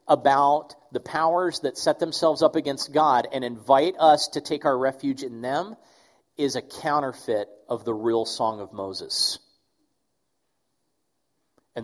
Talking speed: 140 wpm